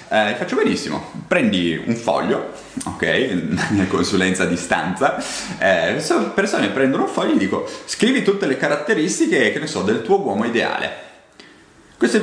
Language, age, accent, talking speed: Italian, 30-49, native, 155 wpm